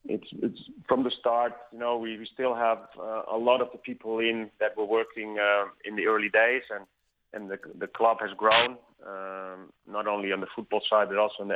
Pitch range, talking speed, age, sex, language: 105-120 Hz, 230 wpm, 30-49, male, English